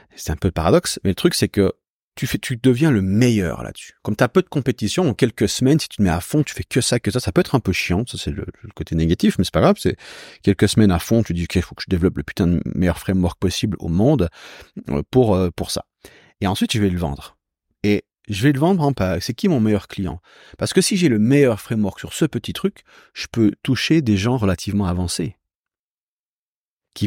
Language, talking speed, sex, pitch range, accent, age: French, 250 wpm, male, 90-125 Hz, French, 40-59